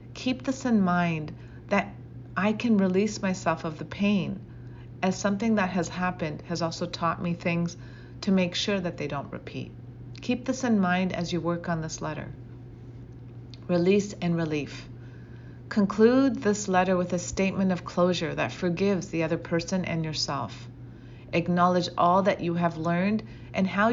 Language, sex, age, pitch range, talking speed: English, female, 40-59, 140-195 Hz, 165 wpm